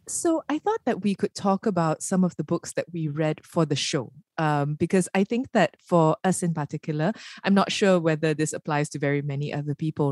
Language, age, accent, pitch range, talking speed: English, 20-39, Malaysian, 155-190 Hz, 225 wpm